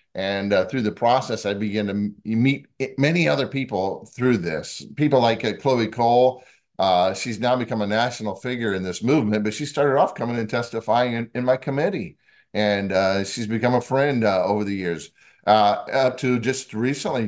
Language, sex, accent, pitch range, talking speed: English, male, American, 100-125 Hz, 190 wpm